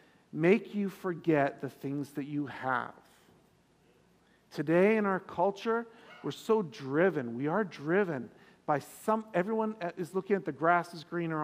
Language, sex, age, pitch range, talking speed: English, male, 50-69, 145-195 Hz, 145 wpm